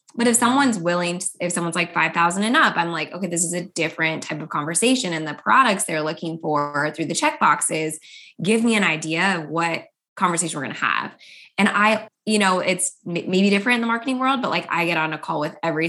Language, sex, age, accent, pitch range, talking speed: English, female, 20-39, American, 160-215 Hz, 230 wpm